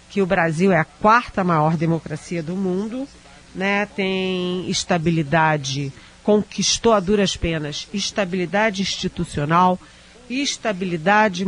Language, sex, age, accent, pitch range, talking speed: Portuguese, female, 40-59, Brazilian, 170-215 Hz, 105 wpm